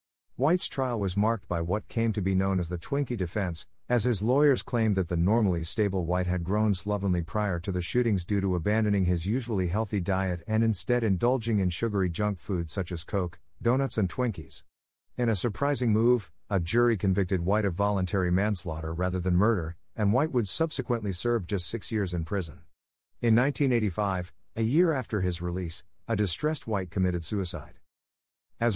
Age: 50-69